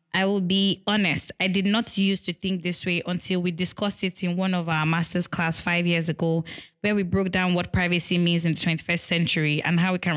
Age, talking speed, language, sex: 10-29, 235 wpm, English, female